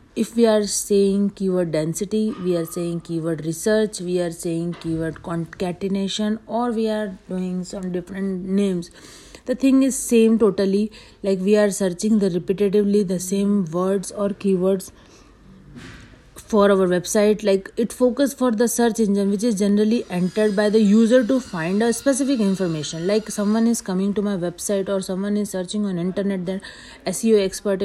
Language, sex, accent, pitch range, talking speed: Hindi, female, native, 185-220 Hz, 165 wpm